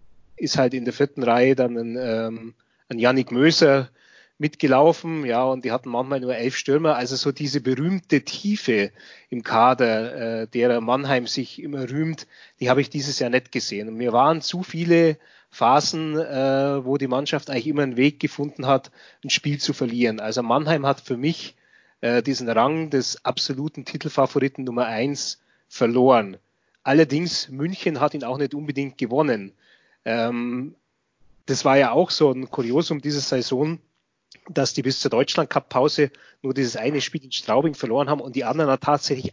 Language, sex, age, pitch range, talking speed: German, male, 30-49, 125-150 Hz, 170 wpm